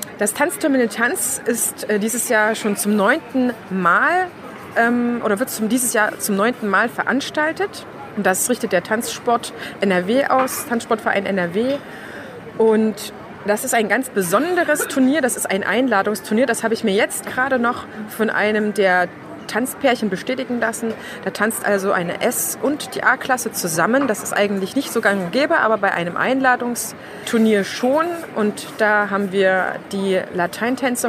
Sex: female